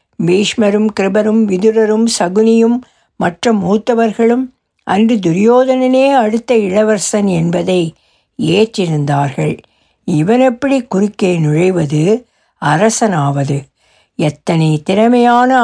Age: 60-79